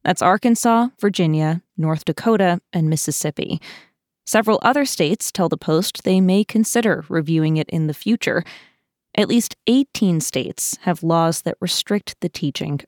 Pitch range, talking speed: 165-215 Hz, 145 wpm